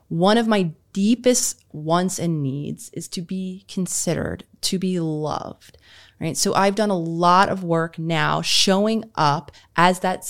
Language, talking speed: English, 155 wpm